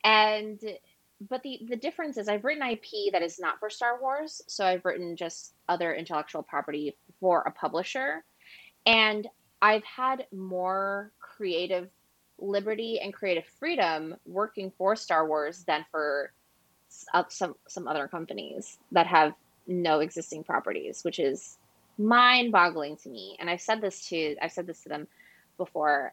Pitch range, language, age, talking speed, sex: 165-215 Hz, English, 20-39, 150 wpm, female